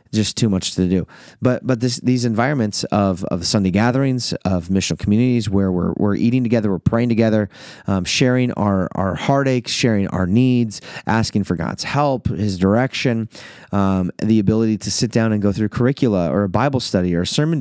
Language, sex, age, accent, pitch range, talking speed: English, male, 30-49, American, 100-125 Hz, 190 wpm